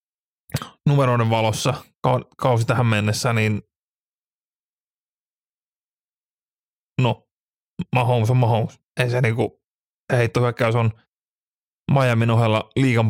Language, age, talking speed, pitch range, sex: Finnish, 30-49, 80 wpm, 105-120 Hz, male